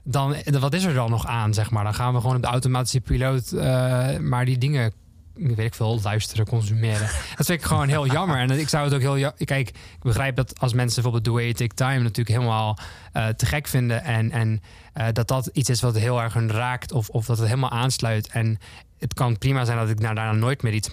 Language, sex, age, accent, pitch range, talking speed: Dutch, male, 20-39, Dutch, 105-125 Hz, 245 wpm